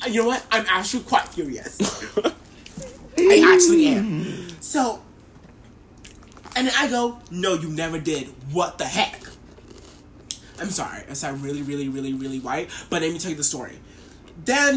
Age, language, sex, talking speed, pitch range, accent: 20-39, English, male, 165 wpm, 175-260 Hz, American